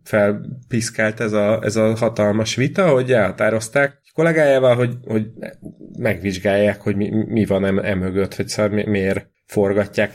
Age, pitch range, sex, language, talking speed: 30-49, 100-110 Hz, male, Hungarian, 140 wpm